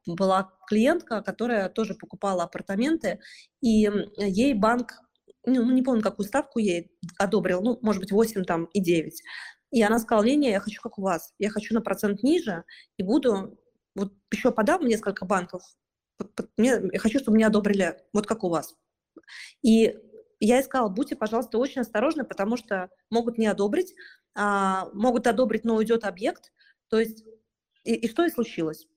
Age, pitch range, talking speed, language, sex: 20-39, 200-250 Hz, 170 wpm, Russian, female